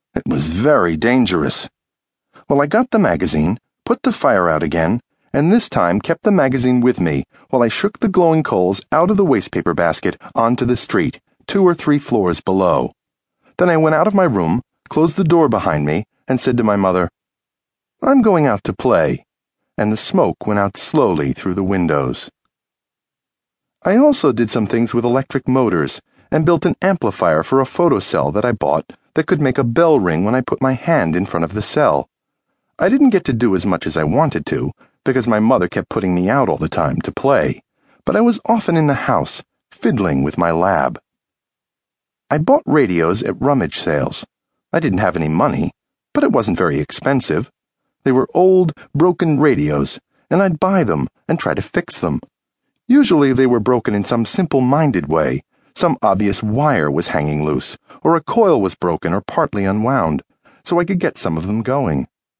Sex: male